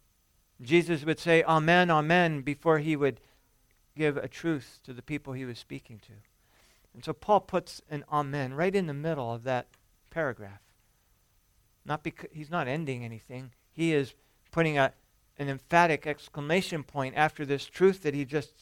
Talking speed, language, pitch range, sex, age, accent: 165 wpm, English, 115-150 Hz, male, 50-69, American